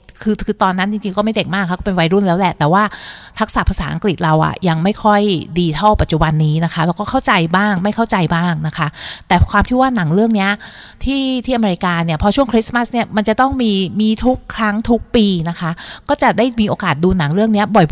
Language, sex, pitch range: Thai, female, 160-205 Hz